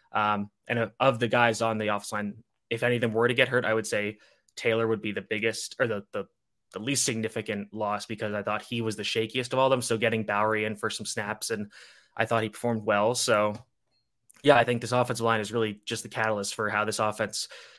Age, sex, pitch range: 20-39, male, 105-120 Hz